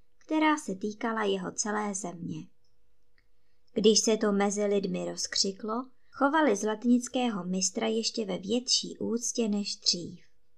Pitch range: 195-235 Hz